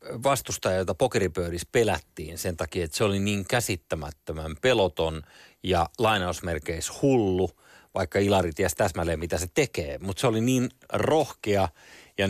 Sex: male